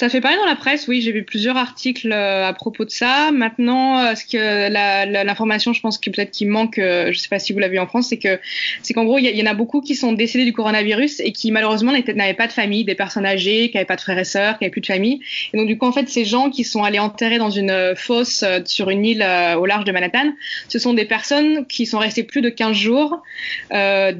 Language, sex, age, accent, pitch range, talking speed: French, female, 20-39, French, 190-235 Hz, 275 wpm